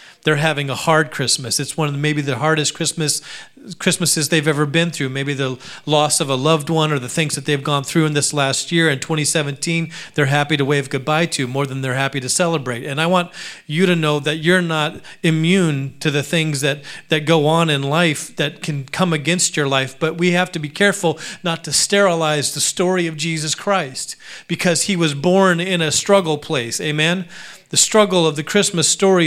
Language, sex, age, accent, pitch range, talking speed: English, male, 40-59, American, 150-185 Hz, 210 wpm